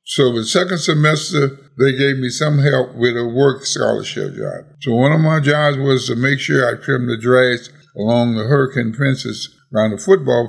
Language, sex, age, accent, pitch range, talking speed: English, male, 60-79, American, 125-155 Hz, 195 wpm